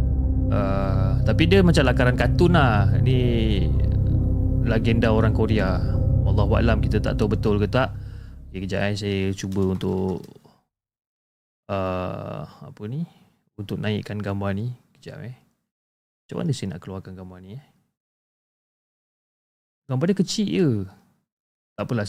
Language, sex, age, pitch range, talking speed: Malay, male, 20-39, 95-120 Hz, 135 wpm